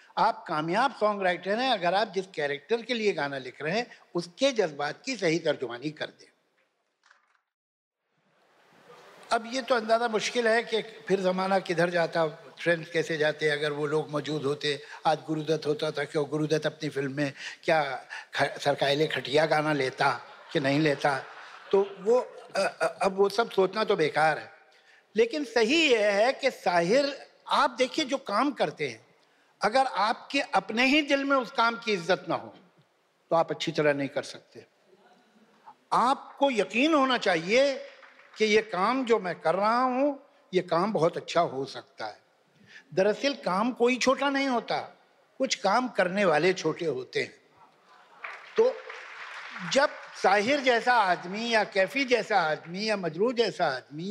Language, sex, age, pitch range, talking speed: Hindi, male, 60-79, 160-255 Hz, 155 wpm